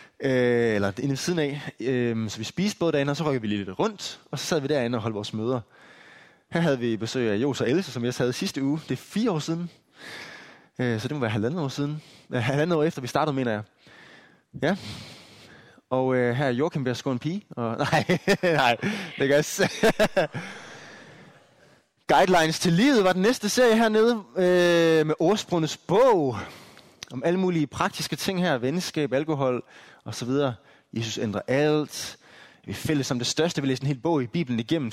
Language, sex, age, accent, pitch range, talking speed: Danish, male, 20-39, native, 125-165 Hz, 185 wpm